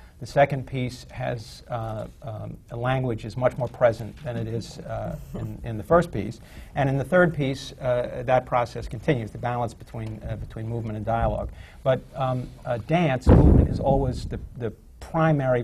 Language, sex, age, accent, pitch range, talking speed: English, male, 50-69, American, 110-130 Hz, 190 wpm